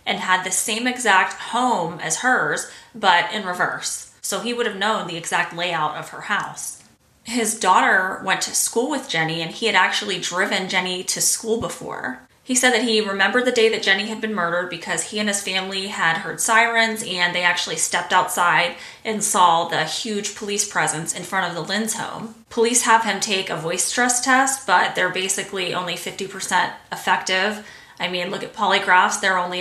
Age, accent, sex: 20-39, American, female